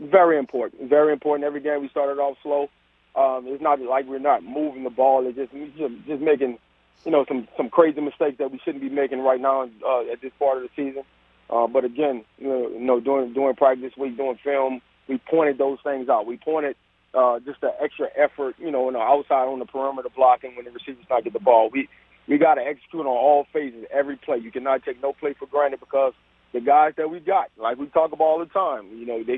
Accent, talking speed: American, 240 wpm